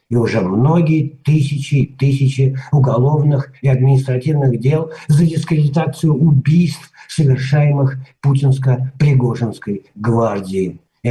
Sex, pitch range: male, 130-160 Hz